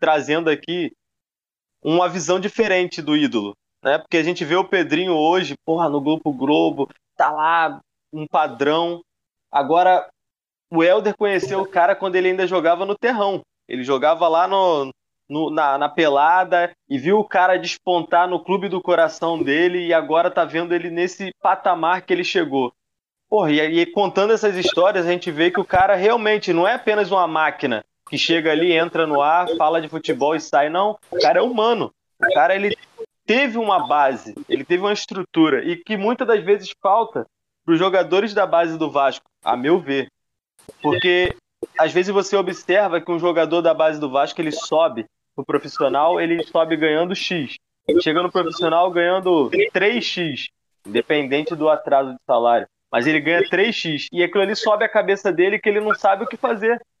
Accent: Brazilian